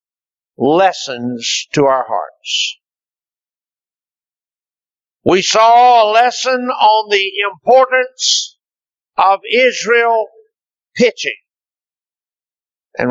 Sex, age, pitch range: male, 60-79, 190-285 Hz